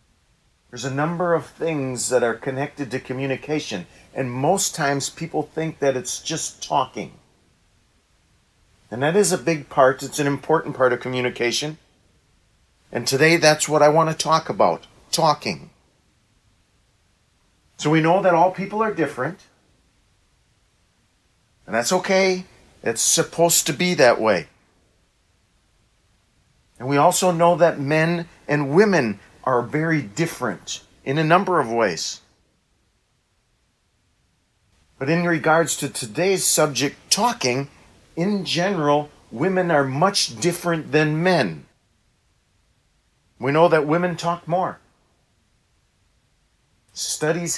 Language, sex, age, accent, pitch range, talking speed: English, male, 40-59, American, 125-170 Hz, 120 wpm